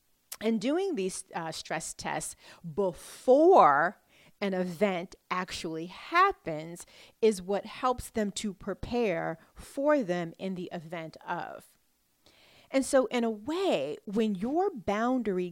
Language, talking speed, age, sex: English, 120 wpm, 40-59, female